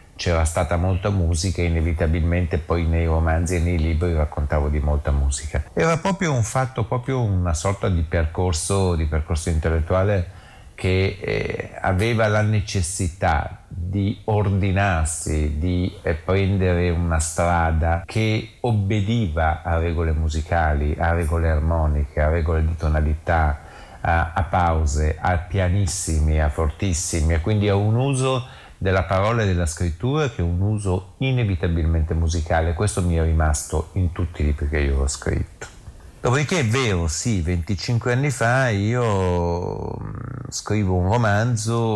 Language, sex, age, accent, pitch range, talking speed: Italian, male, 50-69, native, 80-100 Hz, 140 wpm